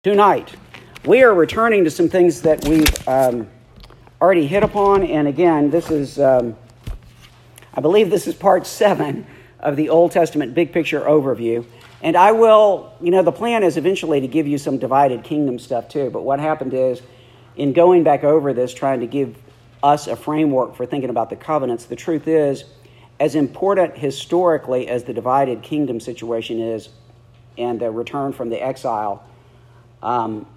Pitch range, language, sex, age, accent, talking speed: 120-155 Hz, English, male, 50-69, American, 170 wpm